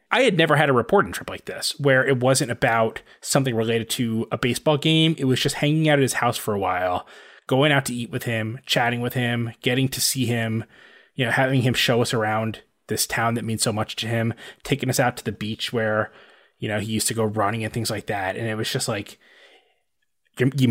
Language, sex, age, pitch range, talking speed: English, male, 20-39, 110-135 Hz, 240 wpm